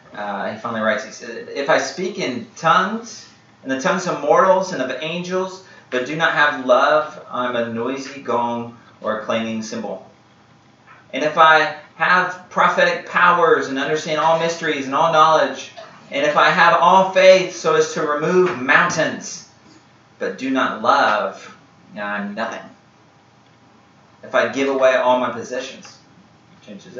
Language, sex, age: English, male, 30-49